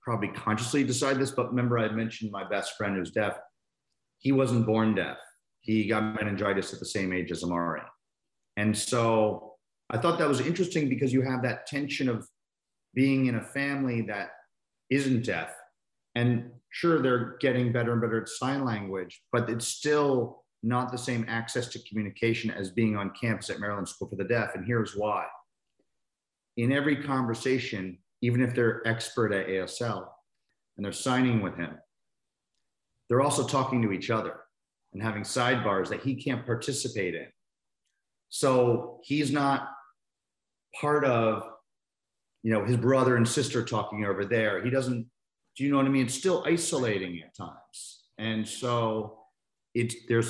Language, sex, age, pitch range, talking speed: English, male, 40-59, 105-130 Hz, 165 wpm